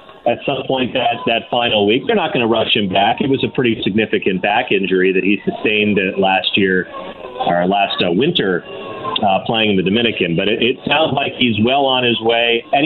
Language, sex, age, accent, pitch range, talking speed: English, male, 40-59, American, 100-130 Hz, 205 wpm